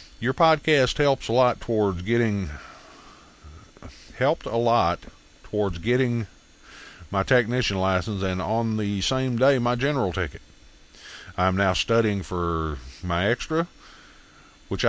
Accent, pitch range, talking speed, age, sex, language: American, 95-120 Hz, 120 wpm, 50-69, male, English